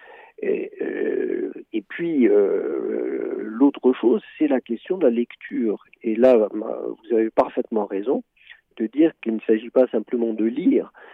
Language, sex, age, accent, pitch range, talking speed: French, male, 50-69, French, 115-185 Hz, 150 wpm